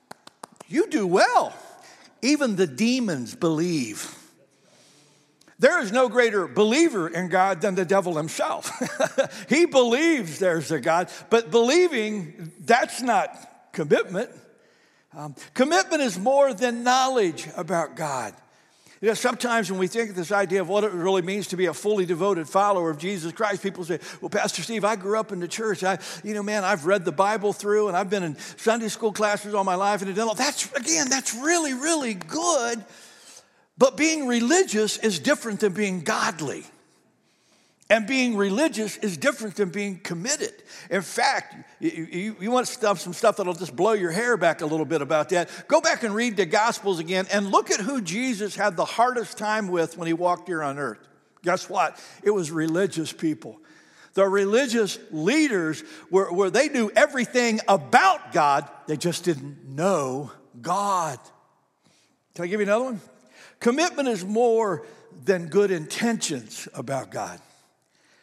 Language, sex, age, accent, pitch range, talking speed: English, male, 60-79, American, 180-235 Hz, 165 wpm